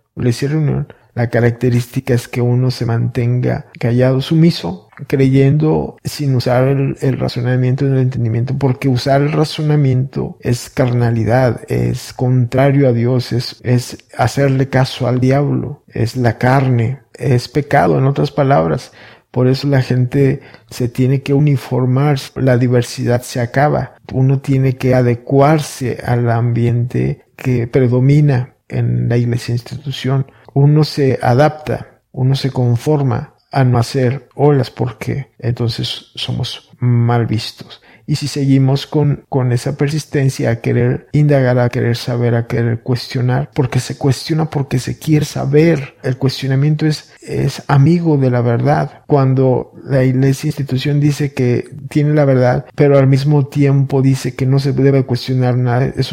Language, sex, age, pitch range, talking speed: English, male, 50-69, 125-140 Hz, 140 wpm